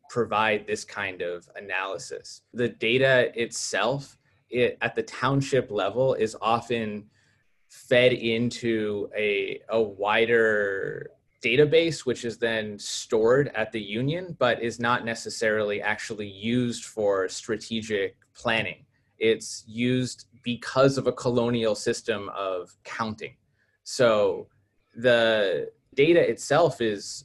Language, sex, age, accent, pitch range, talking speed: English, male, 20-39, American, 110-135 Hz, 110 wpm